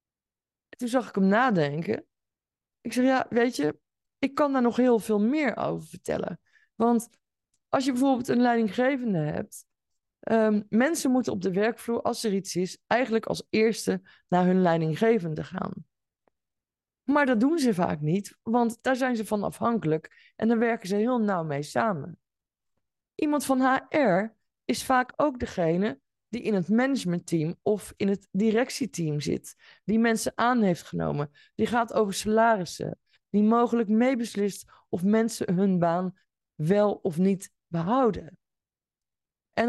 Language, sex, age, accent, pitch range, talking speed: Dutch, female, 20-39, Dutch, 185-240 Hz, 150 wpm